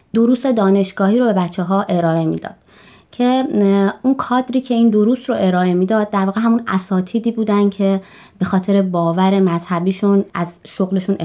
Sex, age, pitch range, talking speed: female, 20-39, 170-205 Hz, 160 wpm